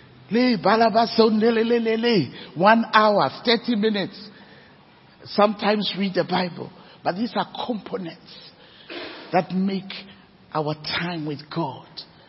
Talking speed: 90 wpm